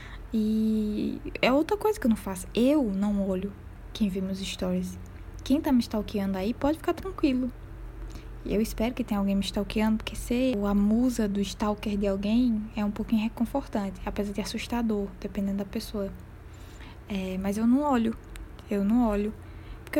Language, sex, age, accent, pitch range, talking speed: Portuguese, female, 10-29, Brazilian, 200-260 Hz, 175 wpm